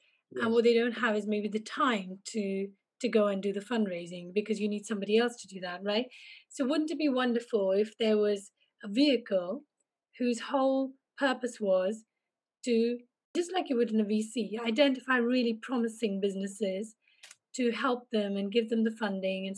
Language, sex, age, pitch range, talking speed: English, female, 30-49, 205-250 Hz, 185 wpm